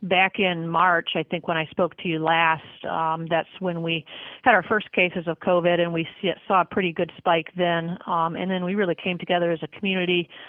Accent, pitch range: American, 165-180 Hz